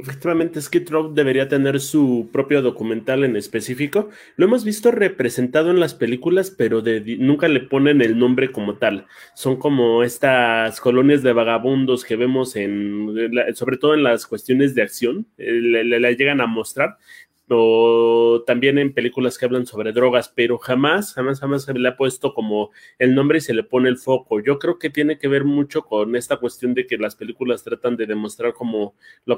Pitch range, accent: 115-140 Hz, Mexican